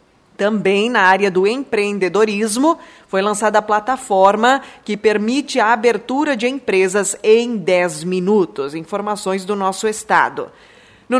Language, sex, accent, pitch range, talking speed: Portuguese, female, Brazilian, 190-245 Hz, 125 wpm